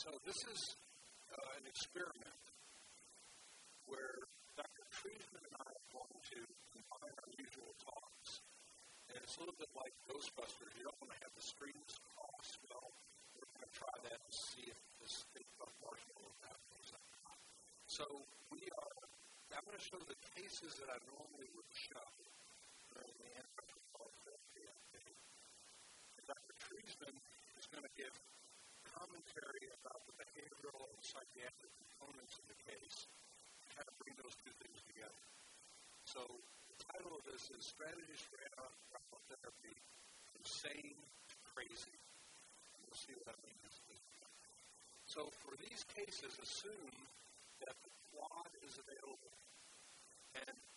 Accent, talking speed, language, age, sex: American, 150 wpm, English, 50-69, male